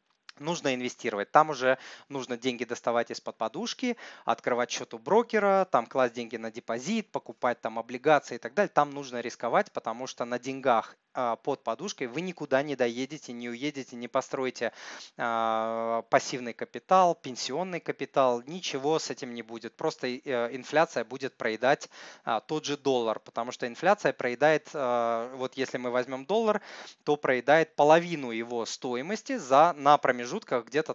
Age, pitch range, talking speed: 20-39, 120-155 Hz, 155 wpm